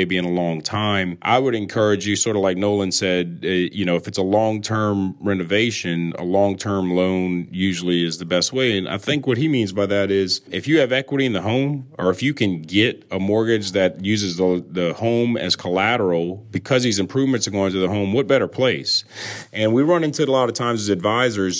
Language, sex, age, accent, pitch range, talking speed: English, male, 30-49, American, 95-110 Hz, 235 wpm